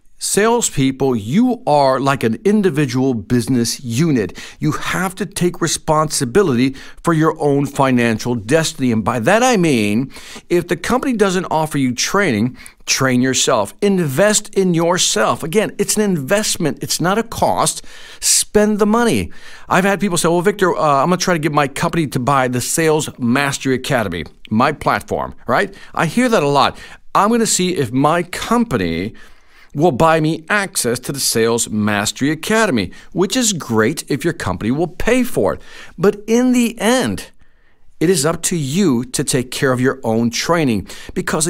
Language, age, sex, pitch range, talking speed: English, 50-69, male, 135-205 Hz, 170 wpm